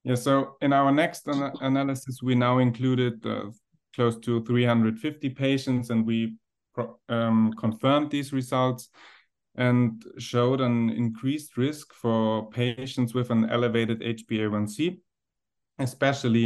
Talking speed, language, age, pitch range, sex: 115 wpm, English, 30-49, 115-135 Hz, male